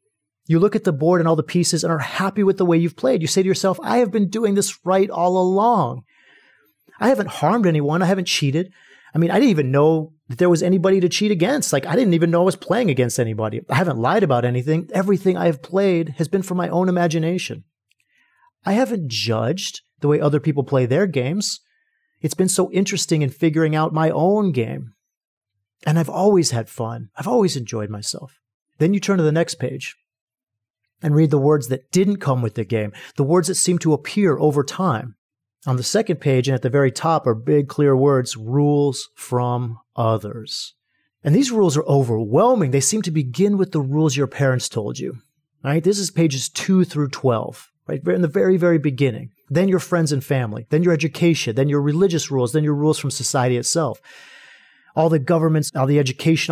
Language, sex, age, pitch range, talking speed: English, male, 30-49, 135-185 Hz, 210 wpm